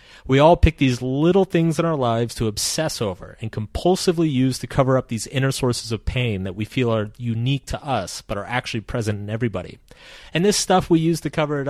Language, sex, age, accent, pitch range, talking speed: English, male, 30-49, American, 110-155 Hz, 225 wpm